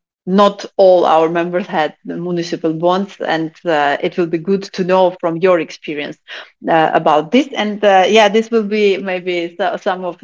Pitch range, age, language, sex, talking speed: 175-220 Hz, 30-49, English, female, 175 wpm